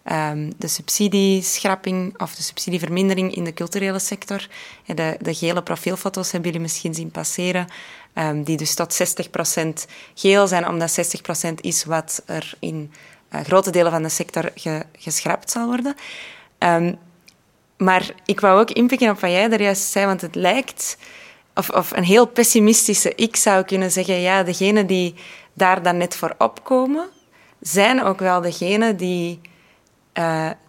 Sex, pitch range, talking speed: female, 175-210 Hz, 150 wpm